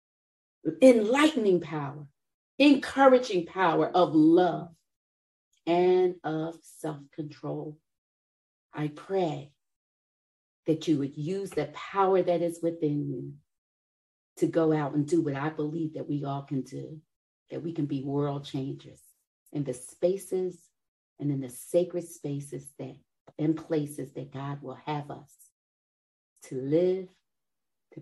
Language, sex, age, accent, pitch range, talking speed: English, female, 40-59, American, 130-160 Hz, 125 wpm